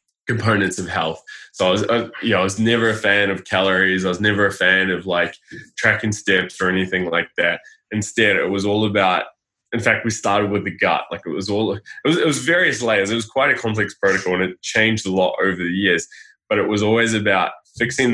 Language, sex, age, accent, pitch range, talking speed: English, male, 10-29, Australian, 95-115 Hz, 235 wpm